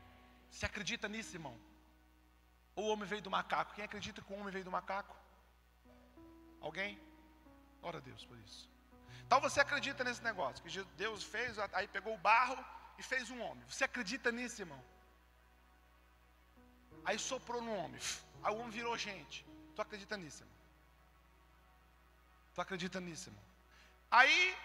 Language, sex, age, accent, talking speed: Gujarati, male, 40-59, Brazilian, 150 wpm